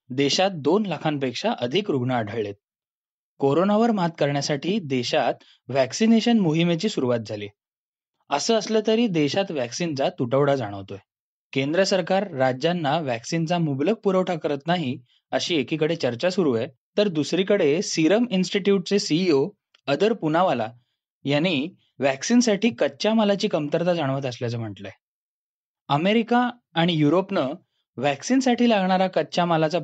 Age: 20-39